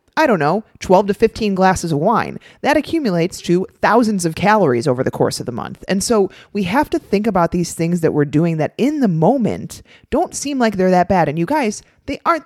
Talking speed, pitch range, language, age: 230 wpm, 155-225 Hz, English, 30-49